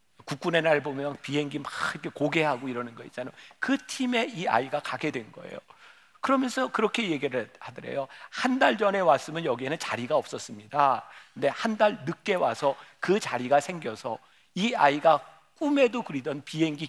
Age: 50-69